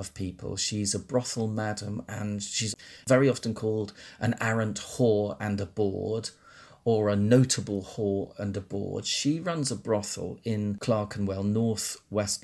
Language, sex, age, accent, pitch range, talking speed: English, male, 40-59, British, 100-120 Hz, 155 wpm